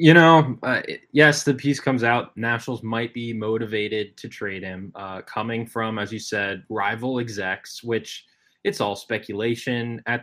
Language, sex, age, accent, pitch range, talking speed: English, male, 20-39, American, 110-130 Hz, 165 wpm